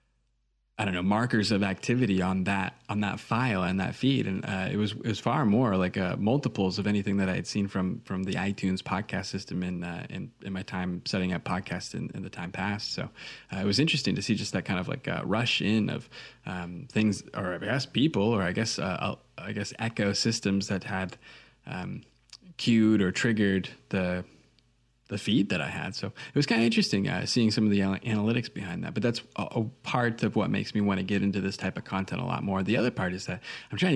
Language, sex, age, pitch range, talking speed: English, male, 20-39, 95-110 Hz, 235 wpm